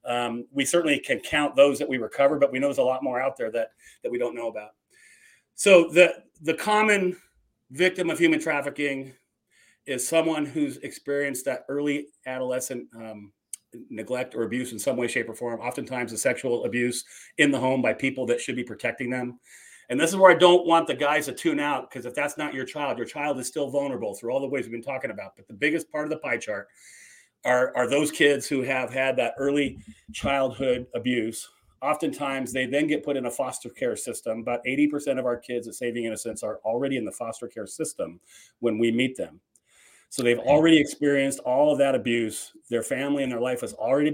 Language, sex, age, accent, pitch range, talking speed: English, male, 40-59, American, 125-150 Hz, 215 wpm